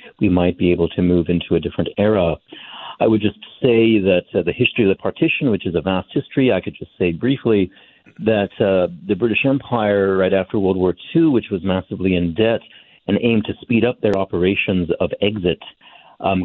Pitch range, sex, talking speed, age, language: 90-110 Hz, male, 205 wpm, 50-69, English